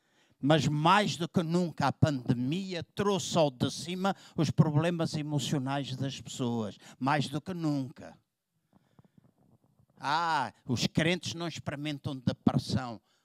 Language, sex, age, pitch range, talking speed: Portuguese, male, 50-69, 130-170 Hz, 120 wpm